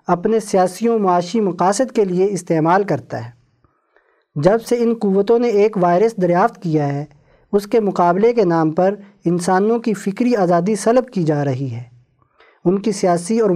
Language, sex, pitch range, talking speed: Urdu, male, 170-215 Hz, 175 wpm